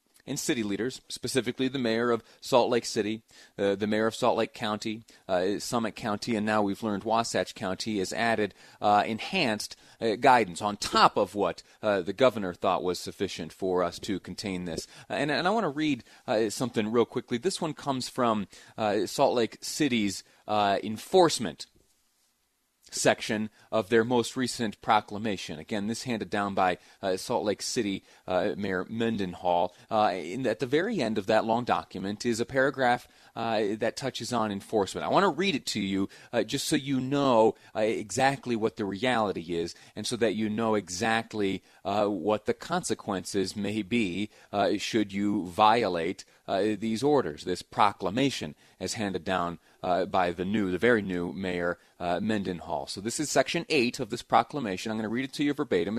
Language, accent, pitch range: English, American, 100-120 Hz